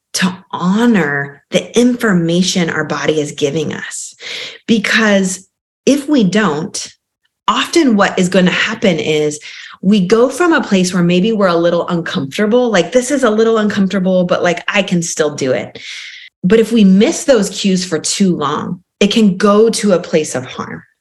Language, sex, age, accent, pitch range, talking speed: English, female, 30-49, American, 165-210 Hz, 175 wpm